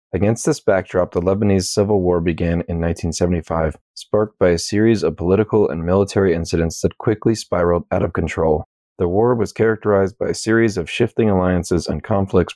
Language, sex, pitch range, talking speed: English, male, 85-100 Hz, 175 wpm